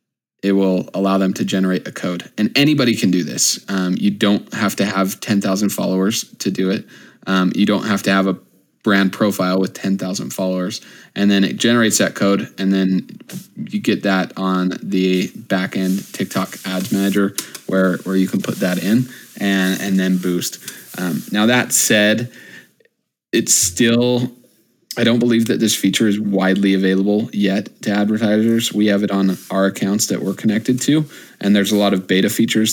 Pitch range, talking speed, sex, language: 95-105 Hz, 180 wpm, male, English